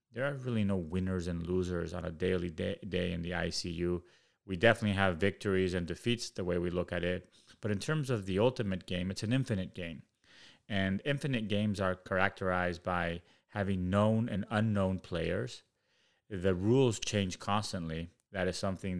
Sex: male